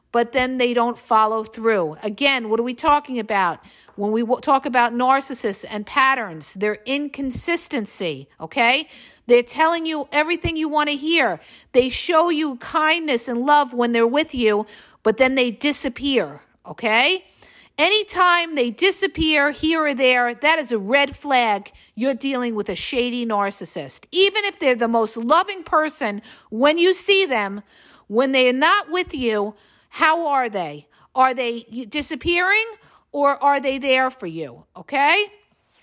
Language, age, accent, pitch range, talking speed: English, 50-69, American, 240-315 Hz, 150 wpm